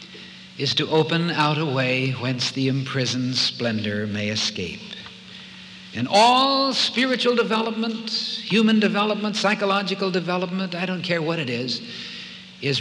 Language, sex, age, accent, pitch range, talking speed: English, male, 60-79, American, 130-195 Hz, 125 wpm